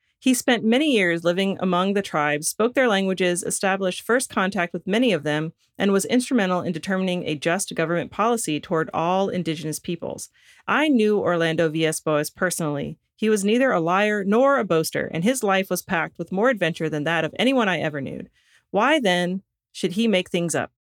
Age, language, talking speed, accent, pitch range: 30-49, English, 190 wpm, American, 165-225 Hz